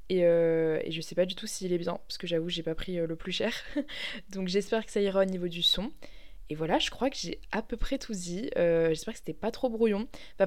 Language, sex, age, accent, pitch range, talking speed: French, female, 20-39, French, 180-215 Hz, 275 wpm